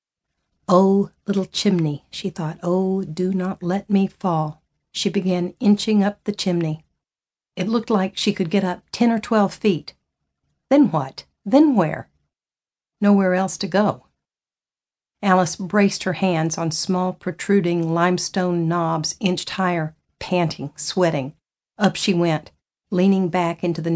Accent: American